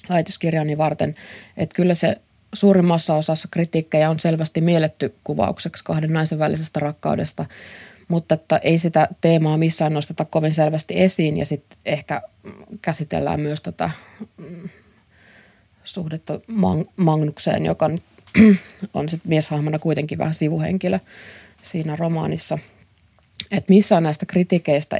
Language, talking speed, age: Finnish, 115 wpm, 20-39